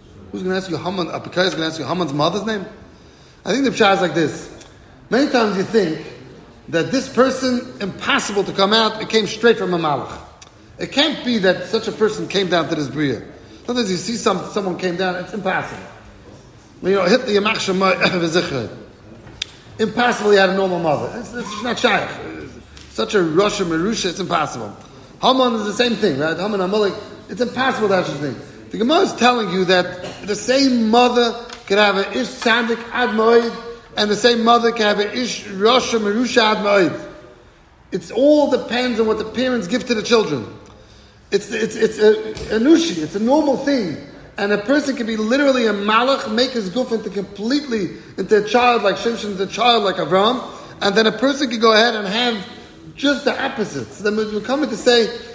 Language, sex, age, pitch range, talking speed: English, male, 40-59, 185-240 Hz, 190 wpm